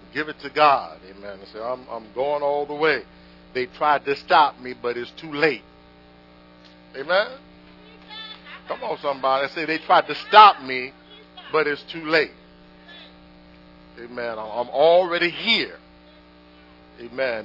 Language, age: English, 50-69